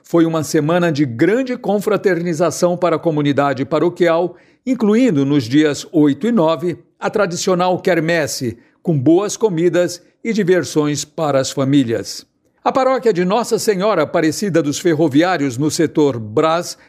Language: Portuguese